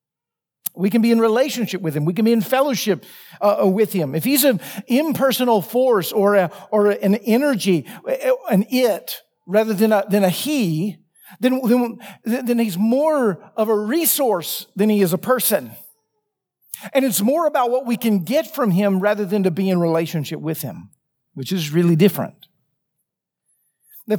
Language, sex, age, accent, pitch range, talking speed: English, male, 50-69, American, 195-245 Hz, 170 wpm